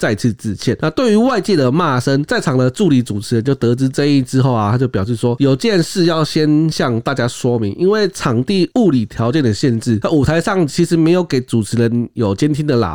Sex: male